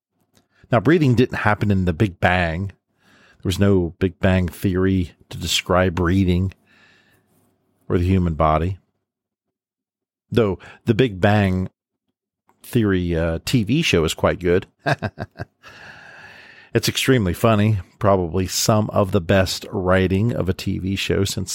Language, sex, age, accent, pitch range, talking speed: English, male, 50-69, American, 90-105 Hz, 130 wpm